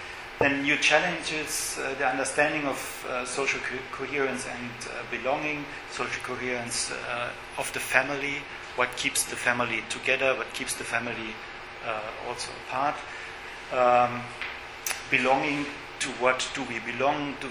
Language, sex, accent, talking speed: English, male, German, 135 wpm